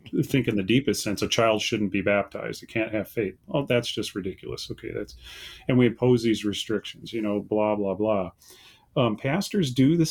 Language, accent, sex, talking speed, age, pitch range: English, American, male, 200 wpm, 40-59, 110-135 Hz